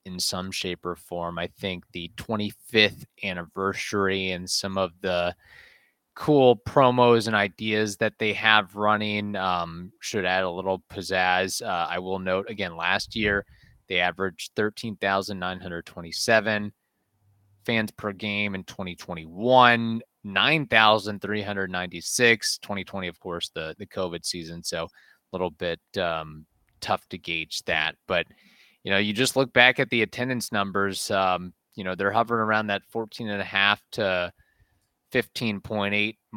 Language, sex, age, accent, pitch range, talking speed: English, male, 30-49, American, 90-105 Hz, 140 wpm